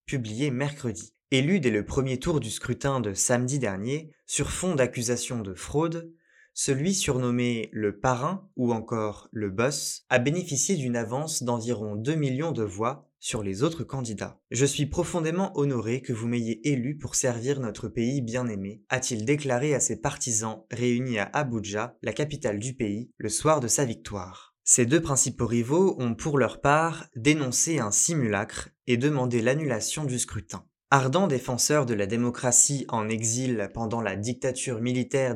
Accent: French